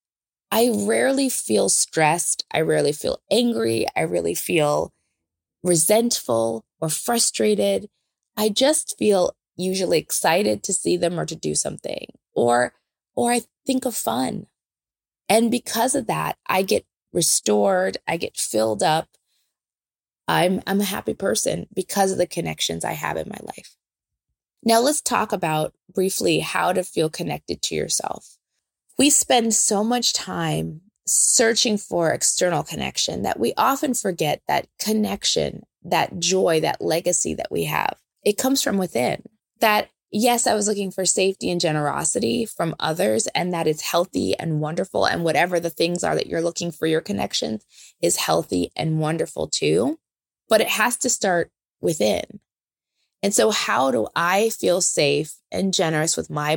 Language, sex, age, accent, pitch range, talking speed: English, female, 20-39, American, 155-215 Hz, 155 wpm